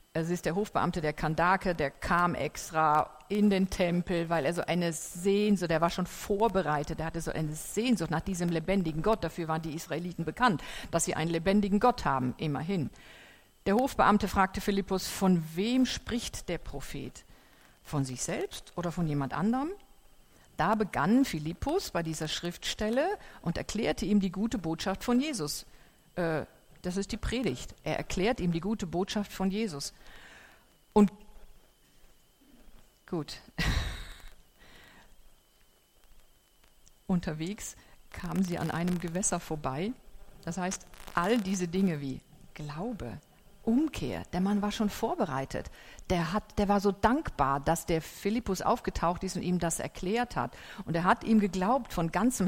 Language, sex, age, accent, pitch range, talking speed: German, female, 50-69, German, 165-210 Hz, 150 wpm